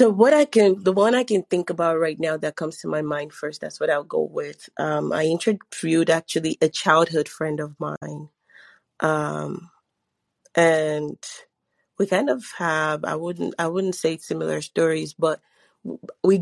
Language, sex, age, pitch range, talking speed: English, female, 30-49, 155-185 Hz, 170 wpm